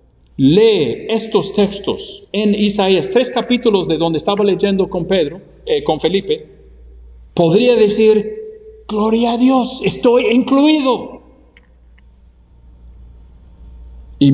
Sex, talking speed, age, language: male, 100 wpm, 50-69, English